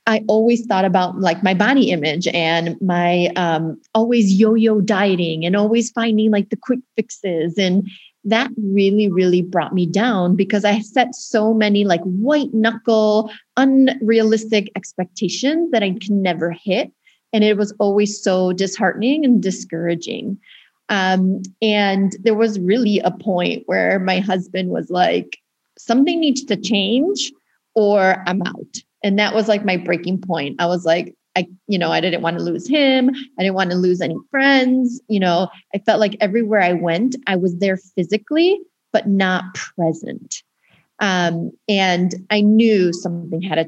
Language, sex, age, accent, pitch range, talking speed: English, female, 30-49, American, 185-225 Hz, 160 wpm